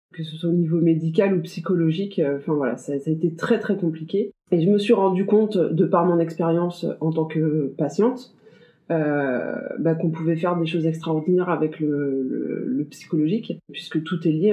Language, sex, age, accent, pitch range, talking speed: French, female, 20-39, French, 150-180 Hz, 200 wpm